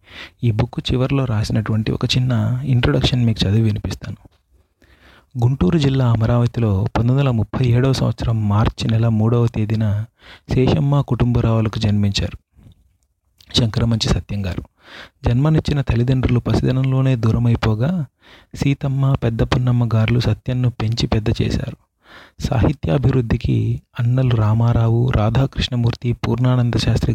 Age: 30-49